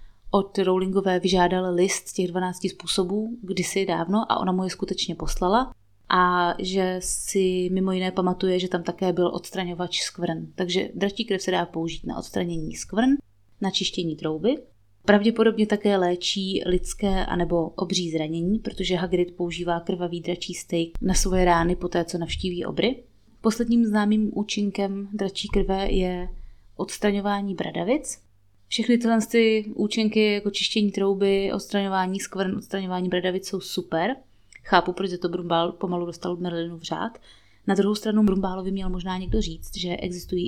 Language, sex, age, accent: Czech, female, 30-49, native